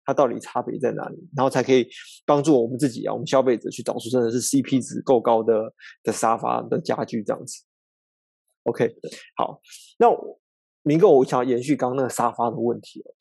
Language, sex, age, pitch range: Chinese, male, 20-39, 125-175 Hz